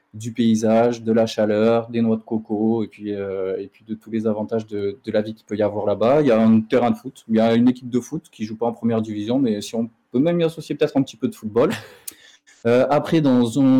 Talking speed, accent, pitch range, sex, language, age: 285 wpm, French, 110-130 Hz, male, French, 20-39